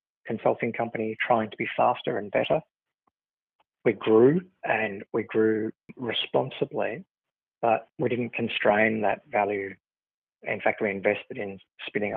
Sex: male